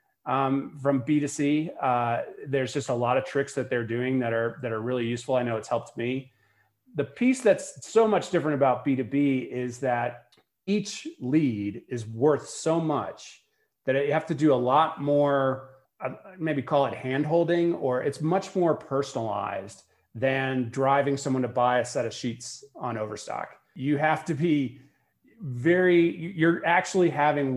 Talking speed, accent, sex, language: 175 wpm, American, male, English